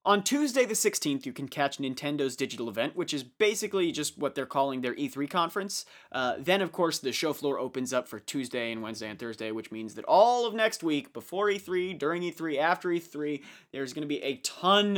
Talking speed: 210 wpm